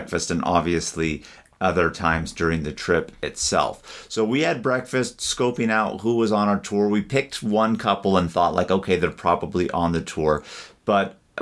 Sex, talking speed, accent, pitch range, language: male, 175 wpm, American, 85-100 Hz, English